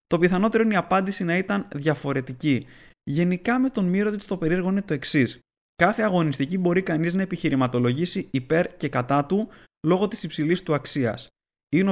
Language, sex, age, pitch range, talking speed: Greek, male, 20-39, 130-190 Hz, 165 wpm